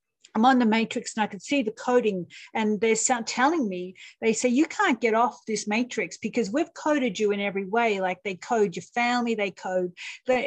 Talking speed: 220 wpm